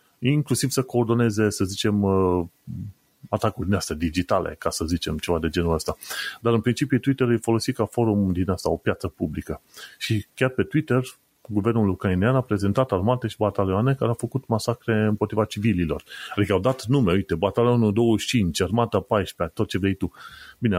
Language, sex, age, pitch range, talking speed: Romanian, male, 30-49, 95-120 Hz, 170 wpm